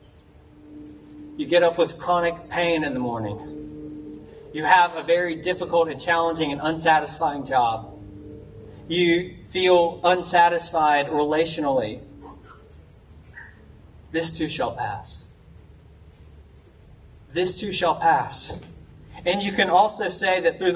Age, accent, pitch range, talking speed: 30-49, American, 145-180 Hz, 110 wpm